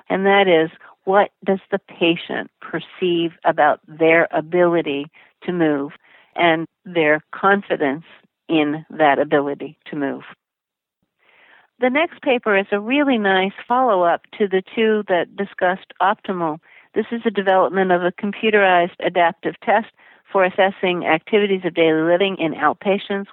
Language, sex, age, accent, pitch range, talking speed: English, female, 50-69, American, 165-200 Hz, 135 wpm